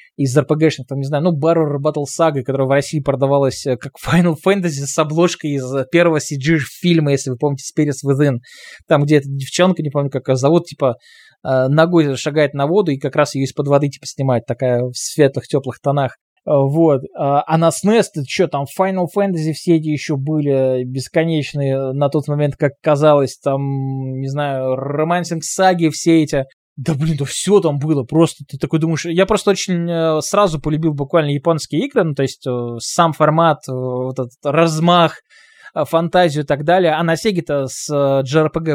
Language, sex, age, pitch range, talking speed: Russian, male, 20-39, 135-165 Hz, 175 wpm